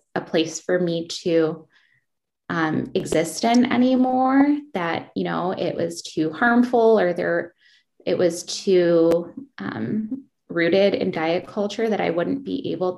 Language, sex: English, female